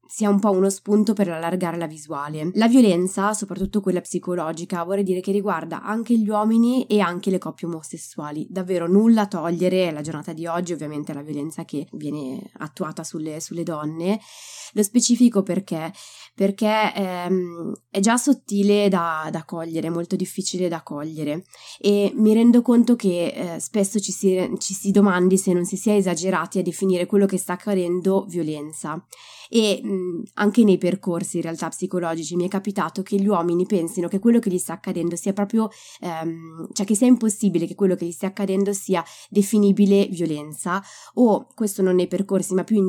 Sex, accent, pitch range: female, native, 170-205 Hz